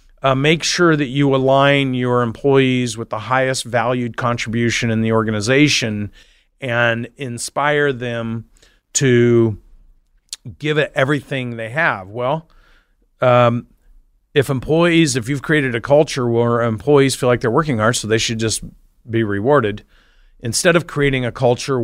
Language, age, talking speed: English, 40-59, 145 wpm